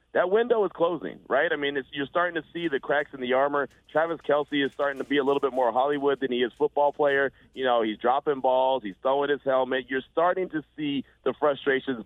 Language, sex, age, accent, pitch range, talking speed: English, male, 40-59, American, 130-170 Hz, 240 wpm